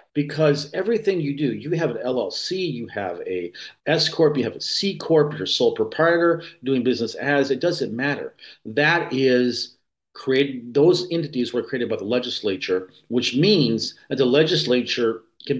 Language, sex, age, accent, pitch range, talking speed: English, male, 40-59, American, 120-155 Hz, 160 wpm